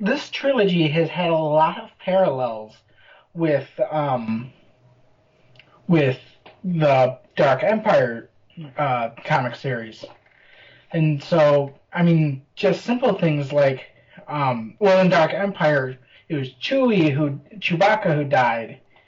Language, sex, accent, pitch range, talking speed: English, male, American, 130-185 Hz, 115 wpm